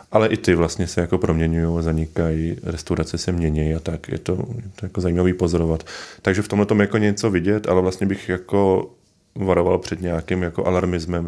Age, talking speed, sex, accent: 20-39, 145 wpm, male, native